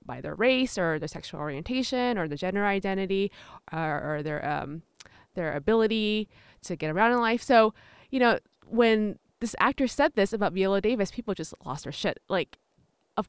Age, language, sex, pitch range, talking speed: 20-39, English, female, 185-255 Hz, 180 wpm